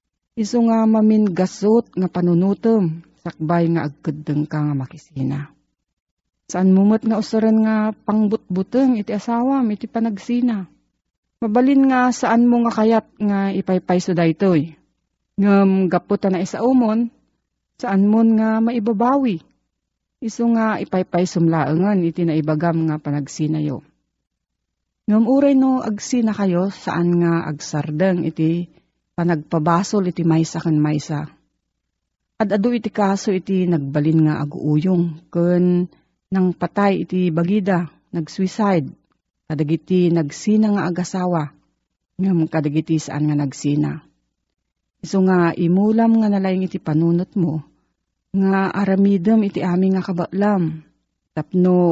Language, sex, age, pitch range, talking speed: Filipino, female, 40-59, 160-215 Hz, 120 wpm